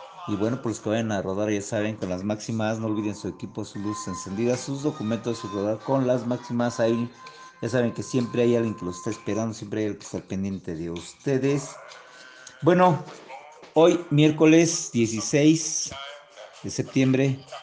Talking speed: 175 wpm